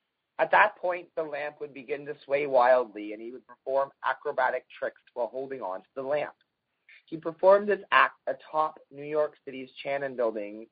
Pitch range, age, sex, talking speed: 130-160 Hz, 30-49, male, 180 wpm